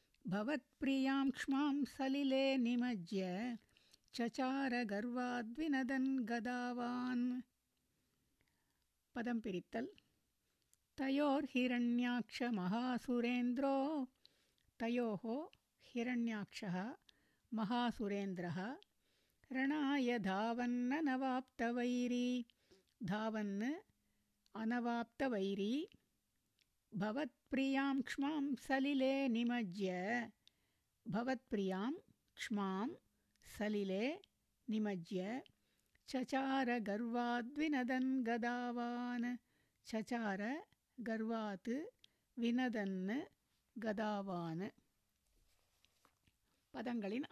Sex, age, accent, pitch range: female, 60-79, native, 215-265 Hz